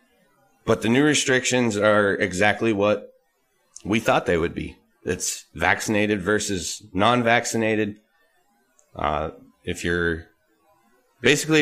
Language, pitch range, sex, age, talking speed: English, 95-110 Hz, male, 30-49, 100 wpm